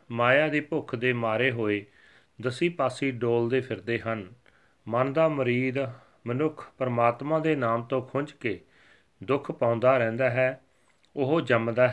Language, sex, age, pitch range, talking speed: Punjabi, male, 40-59, 110-135 Hz, 135 wpm